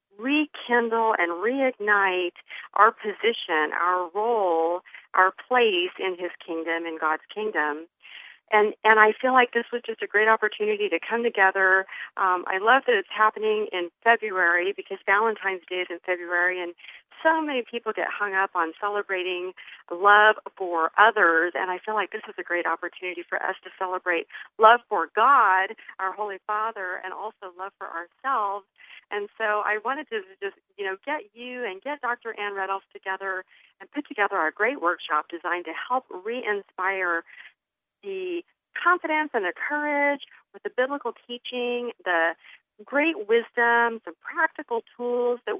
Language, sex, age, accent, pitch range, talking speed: English, female, 40-59, American, 185-245 Hz, 160 wpm